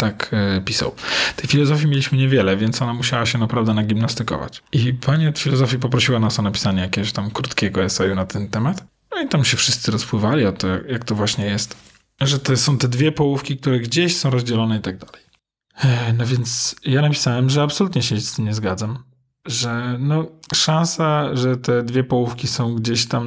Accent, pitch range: native, 115-140 Hz